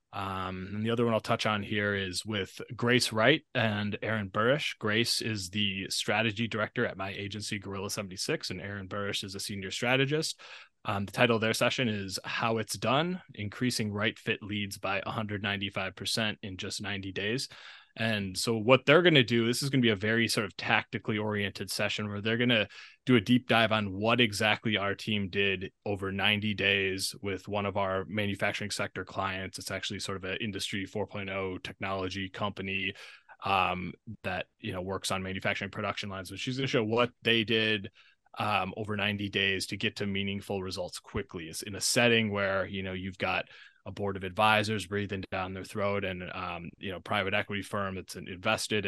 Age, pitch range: 20-39, 95-110 Hz